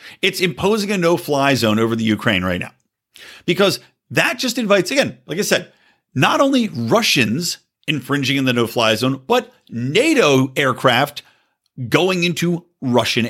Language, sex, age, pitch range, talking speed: English, male, 50-69, 140-210 Hz, 145 wpm